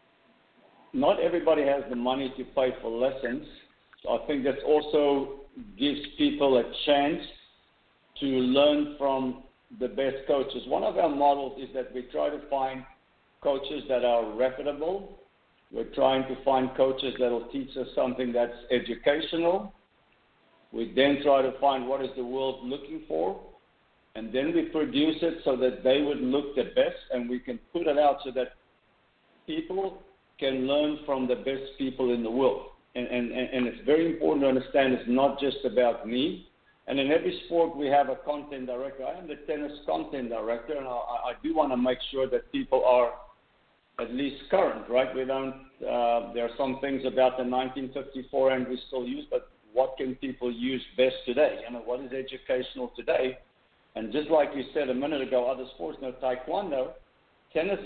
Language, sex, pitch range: English, male, 125-145 Hz